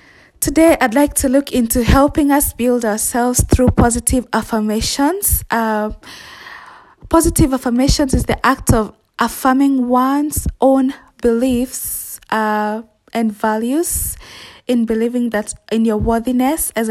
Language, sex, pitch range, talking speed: English, female, 230-280 Hz, 120 wpm